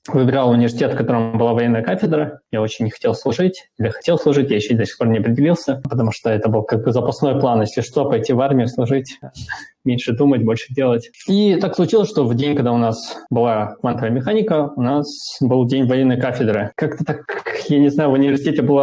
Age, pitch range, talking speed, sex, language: 20-39, 120-145 Hz, 215 wpm, male, Russian